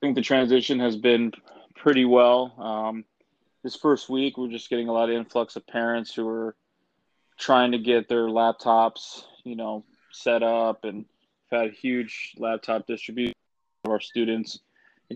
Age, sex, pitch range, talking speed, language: 20-39, male, 115-125 Hz, 165 wpm, English